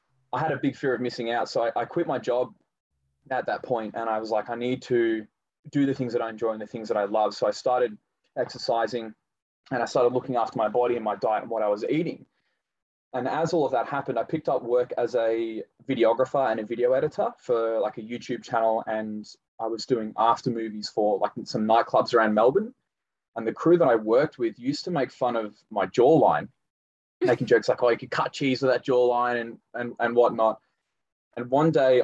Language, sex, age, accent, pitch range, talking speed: English, male, 20-39, Australian, 115-135 Hz, 225 wpm